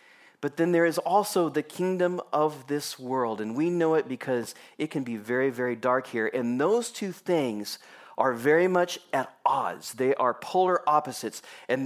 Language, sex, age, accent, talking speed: English, male, 40-59, American, 180 wpm